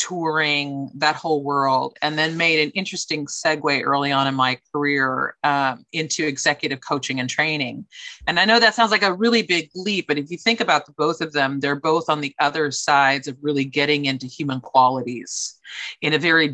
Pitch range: 145-205 Hz